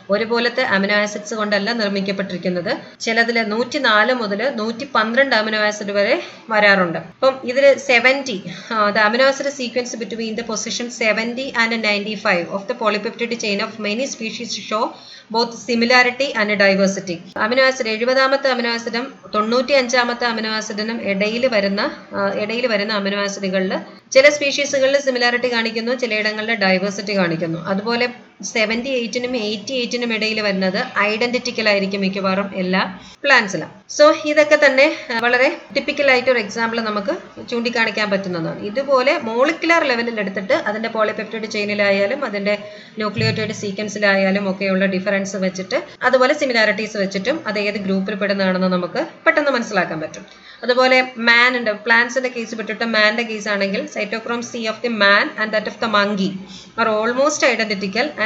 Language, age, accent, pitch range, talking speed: English, 30-49, Indian, 205-250 Hz, 115 wpm